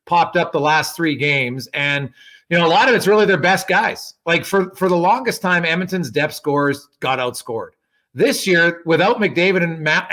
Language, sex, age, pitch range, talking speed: English, male, 40-59, 145-190 Hz, 200 wpm